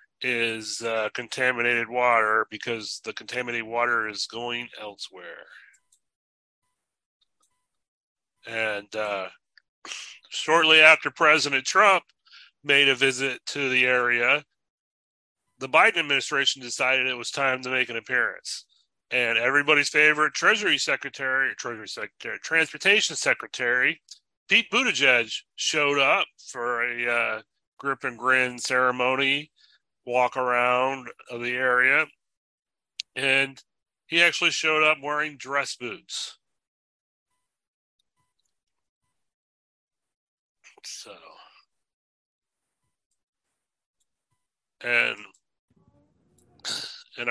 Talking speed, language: 90 wpm, English